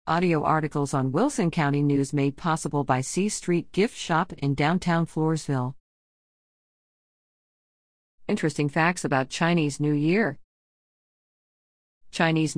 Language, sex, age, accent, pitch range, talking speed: English, female, 40-59, American, 145-200 Hz, 110 wpm